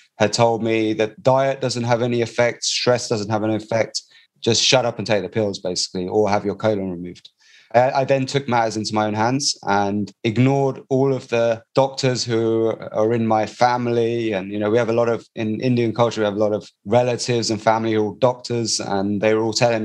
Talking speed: 225 wpm